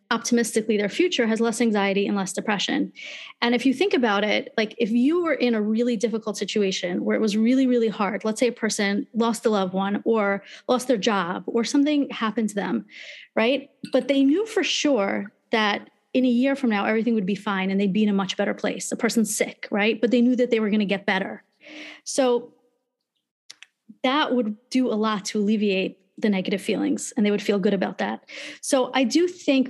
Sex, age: female, 30-49